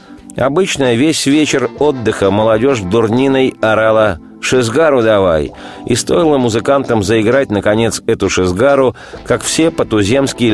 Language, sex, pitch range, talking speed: Russian, male, 100-125 Hz, 110 wpm